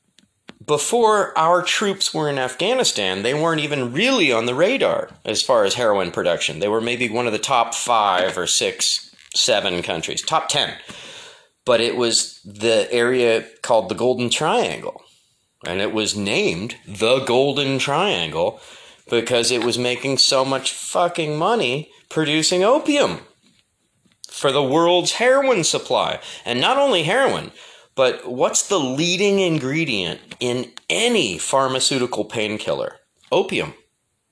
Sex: male